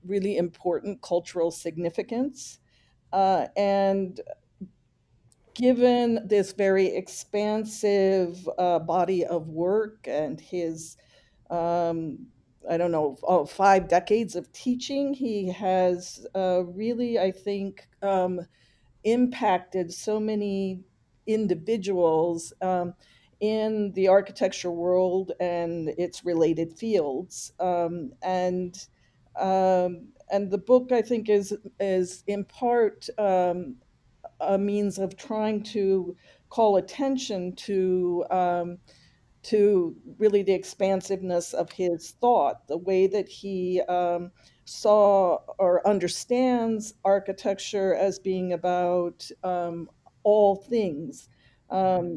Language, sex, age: English, female, 50-69